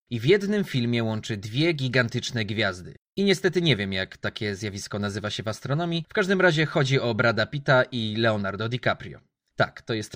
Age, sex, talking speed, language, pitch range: 20-39, male, 190 wpm, Polish, 110-155 Hz